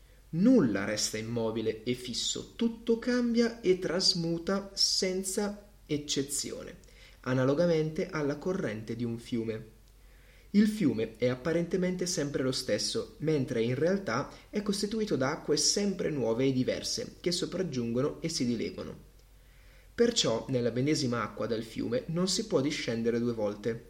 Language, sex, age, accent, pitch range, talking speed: Italian, male, 30-49, native, 115-170 Hz, 130 wpm